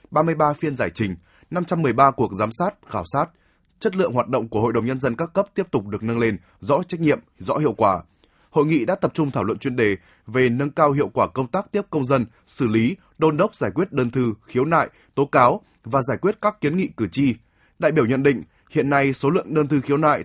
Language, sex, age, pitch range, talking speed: Vietnamese, male, 20-39, 115-155 Hz, 245 wpm